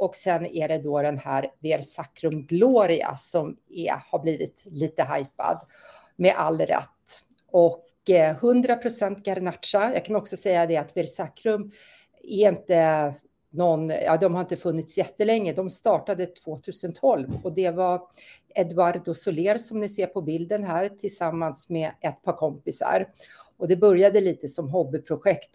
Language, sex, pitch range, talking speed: Swedish, female, 160-195 Hz, 145 wpm